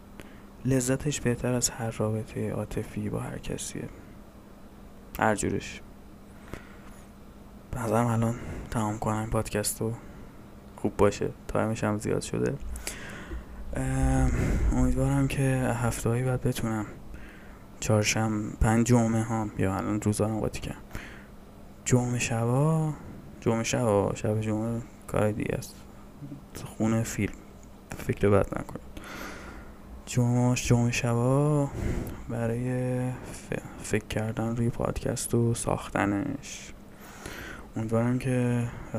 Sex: male